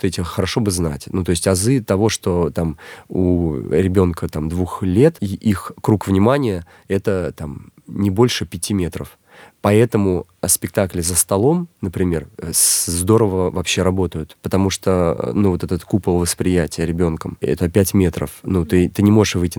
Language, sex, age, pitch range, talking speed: Russian, male, 30-49, 90-110 Hz, 155 wpm